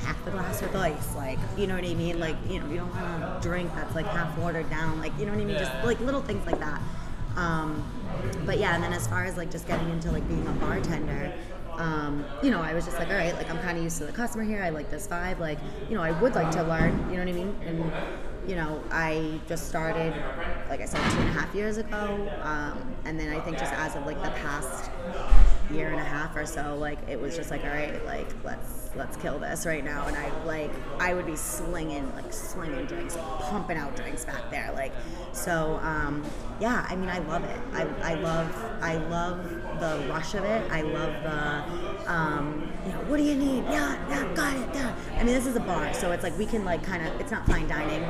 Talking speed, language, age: 245 wpm, English, 20-39